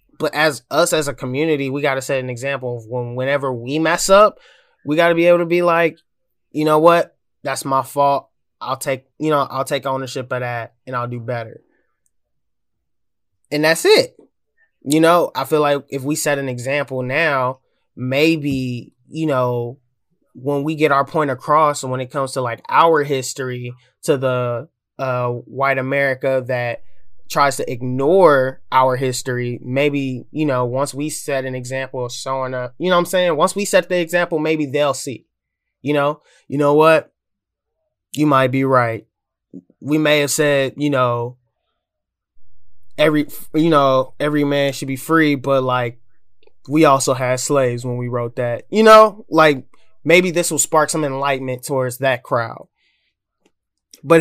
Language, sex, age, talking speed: English, male, 20-39, 175 wpm